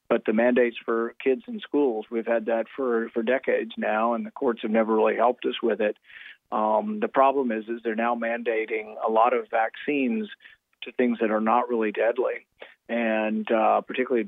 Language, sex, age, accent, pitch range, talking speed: English, male, 40-59, American, 110-120 Hz, 195 wpm